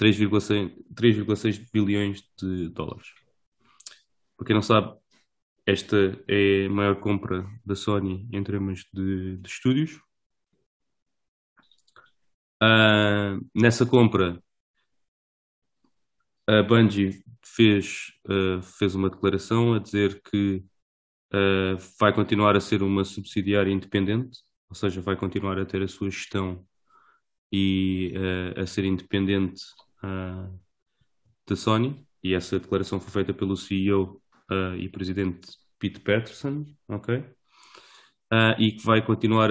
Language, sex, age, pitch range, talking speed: English, male, 20-39, 95-105 Hz, 100 wpm